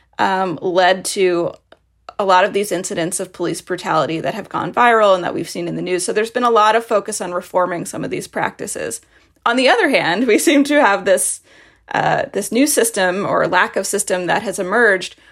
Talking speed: 210 wpm